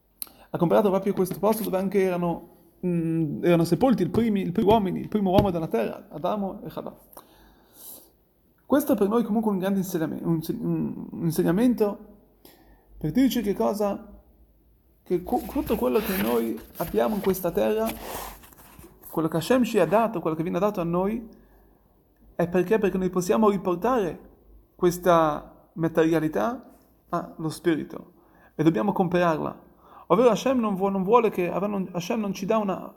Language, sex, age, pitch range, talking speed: Italian, male, 30-49, 170-215 Hz, 155 wpm